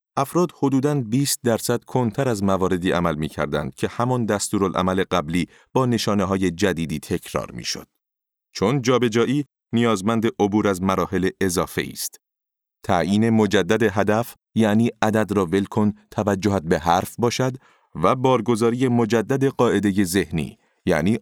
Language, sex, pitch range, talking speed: Persian, male, 100-125 Hz, 125 wpm